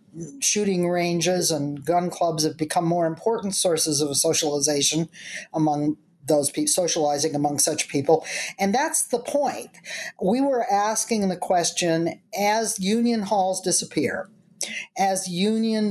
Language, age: English, 50-69